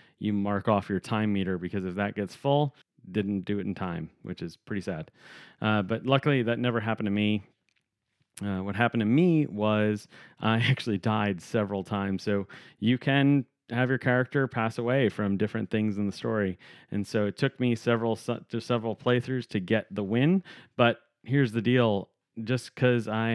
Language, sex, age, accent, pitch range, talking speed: English, male, 30-49, American, 105-125 Hz, 190 wpm